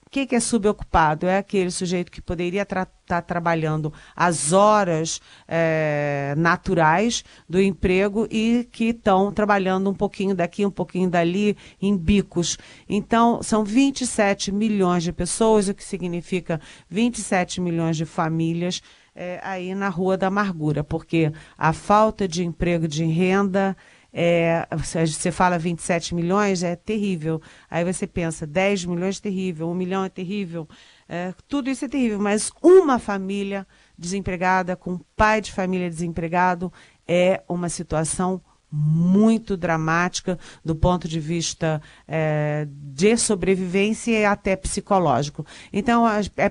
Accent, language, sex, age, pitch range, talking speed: Brazilian, Portuguese, female, 40-59, 170-205 Hz, 135 wpm